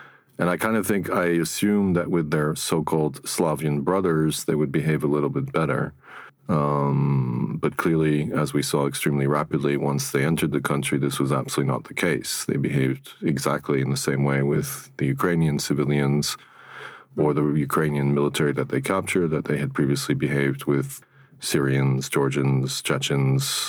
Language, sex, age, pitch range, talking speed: Ukrainian, male, 40-59, 70-80 Hz, 165 wpm